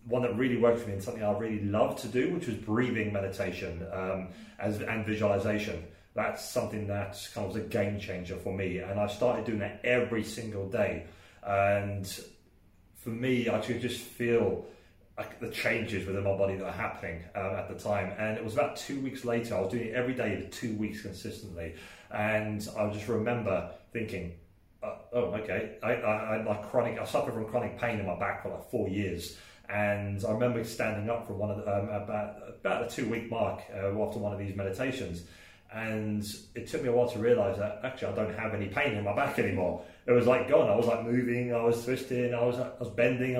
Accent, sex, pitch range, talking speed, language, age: British, male, 100-120 Hz, 220 wpm, English, 30-49